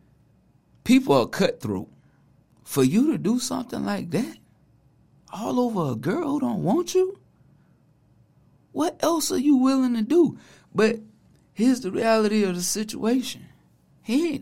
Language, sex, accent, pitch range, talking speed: English, male, American, 140-215 Hz, 135 wpm